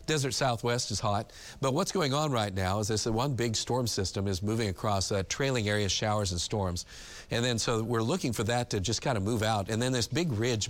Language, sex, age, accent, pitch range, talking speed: English, male, 50-69, American, 105-125 Hz, 240 wpm